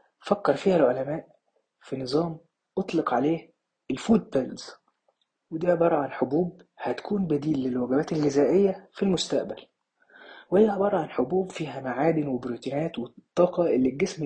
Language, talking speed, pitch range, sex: Arabic, 120 wpm, 140-190 Hz, male